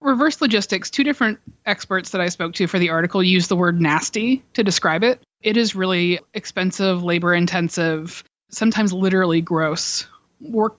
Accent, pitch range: American, 170-215 Hz